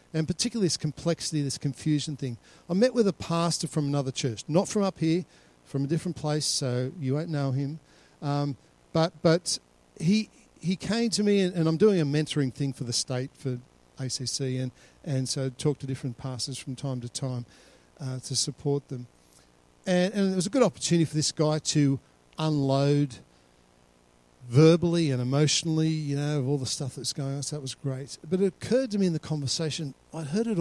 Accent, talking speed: Australian, 200 wpm